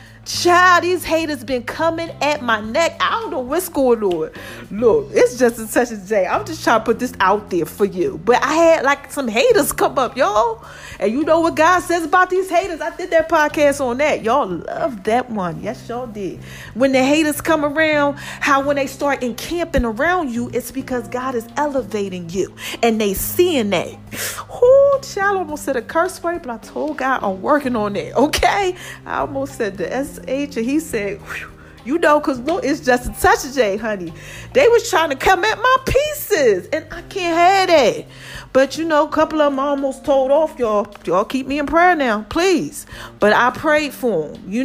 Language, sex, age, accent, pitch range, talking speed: English, female, 40-59, American, 235-330 Hz, 210 wpm